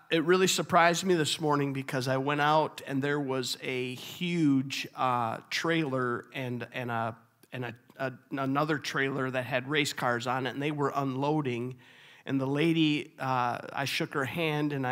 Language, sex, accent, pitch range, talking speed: English, male, American, 125-150 Hz, 175 wpm